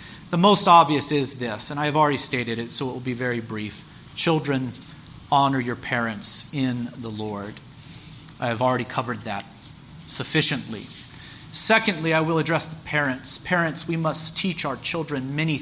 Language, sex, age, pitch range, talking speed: English, male, 30-49, 130-160 Hz, 165 wpm